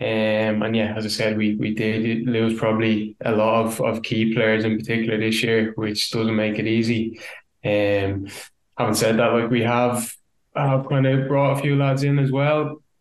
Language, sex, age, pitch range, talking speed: English, male, 10-29, 110-125 Hz, 200 wpm